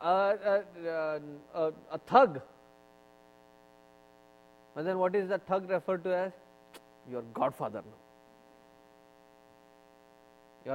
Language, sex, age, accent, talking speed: English, male, 20-39, Indian, 100 wpm